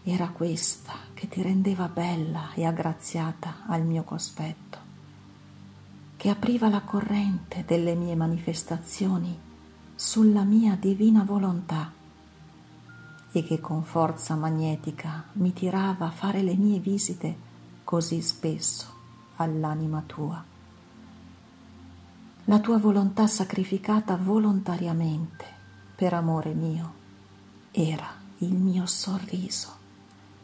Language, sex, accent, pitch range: Italian, female, native, 115-185 Hz